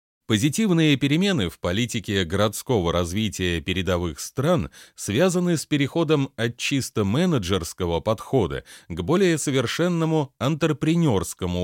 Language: Russian